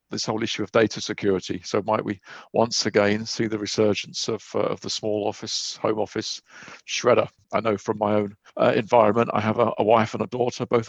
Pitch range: 105-120 Hz